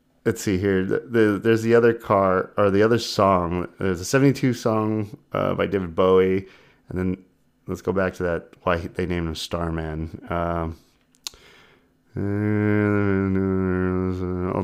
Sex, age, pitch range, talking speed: male, 30-49, 85-105 Hz, 130 wpm